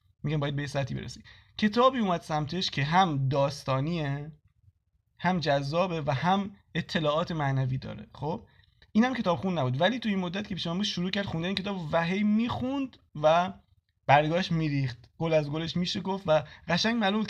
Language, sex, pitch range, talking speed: Persian, male, 130-170 Hz, 165 wpm